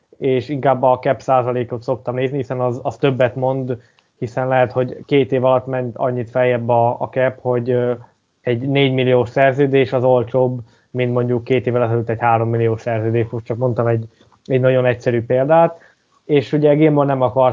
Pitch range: 125-140 Hz